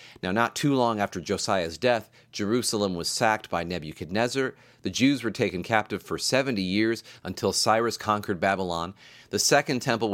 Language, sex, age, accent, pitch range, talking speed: English, male, 30-49, American, 100-130 Hz, 160 wpm